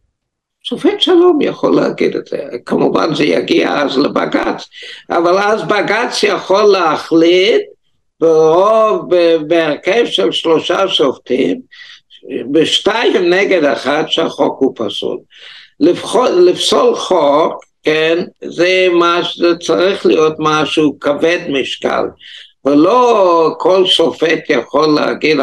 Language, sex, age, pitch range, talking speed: Hebrew, male, 60-79, 155-245 Hz, 105 wpm